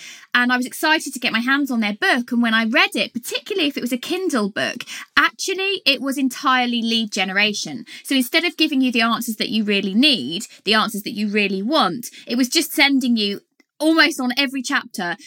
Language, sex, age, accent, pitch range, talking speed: English, female, 20-39, British, 225-285 Hz, 215 wpm